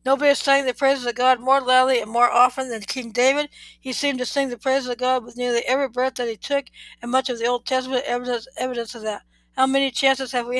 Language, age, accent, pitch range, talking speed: English, 60-79, American, 235-260 Hz, 250 wpm